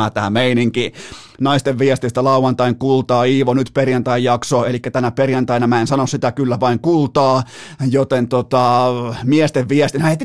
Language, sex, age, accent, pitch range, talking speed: Finnish, male, 30-49, native, 120-145 Hz, 160 wpm